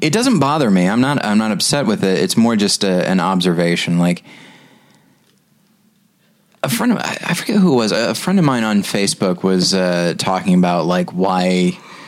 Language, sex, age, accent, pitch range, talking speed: English, male, 30-49, American, 95-150 Hz, 190 wpm